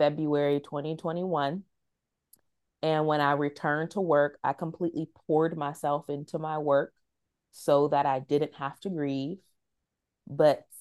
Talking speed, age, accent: 130 wpm, 30-49, American